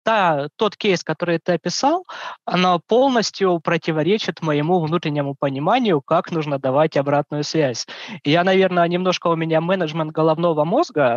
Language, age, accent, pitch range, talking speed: Russian, 20-39, native, 155-190 Hz, 130 wpm